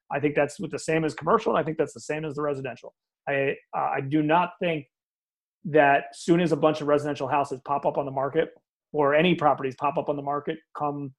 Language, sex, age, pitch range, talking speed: English, male, 30-49, 140-170 Hz, 240 wpm